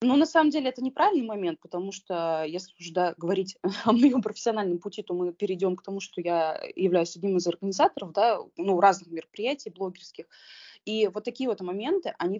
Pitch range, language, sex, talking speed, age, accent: 175-215 Hz, Russian, female, 185 wpm, 20-39, native